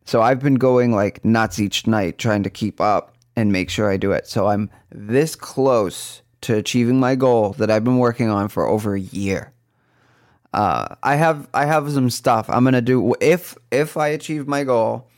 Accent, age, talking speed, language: American, 20-39, 200 wpm, English